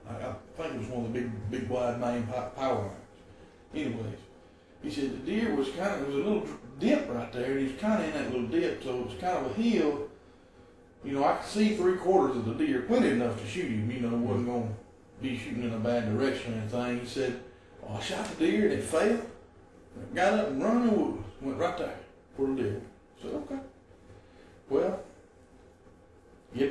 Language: English